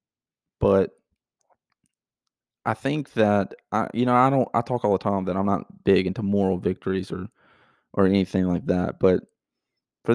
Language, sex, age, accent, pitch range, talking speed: English, male, 20-39, American, 95-105 Hz, 165 wpm